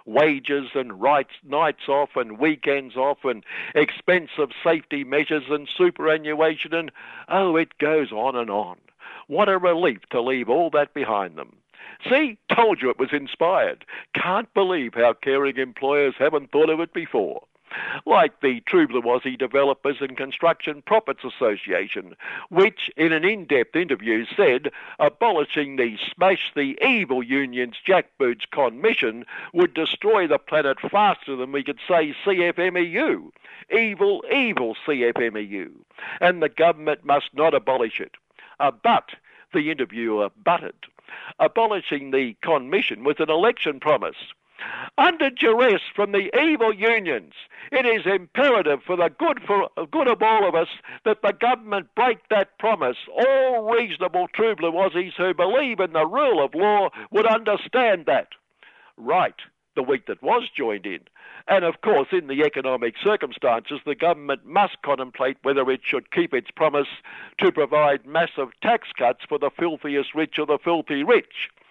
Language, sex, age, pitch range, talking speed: English, male, 60-79, 140-205 Hz, 150 wpm